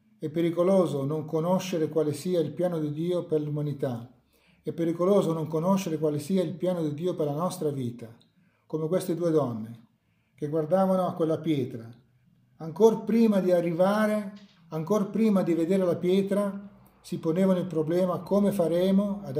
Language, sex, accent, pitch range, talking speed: Italian, male, native, 150-185 Hz, 160 wpm